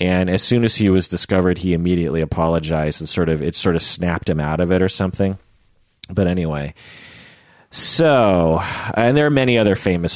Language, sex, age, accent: English, male, 30-49, American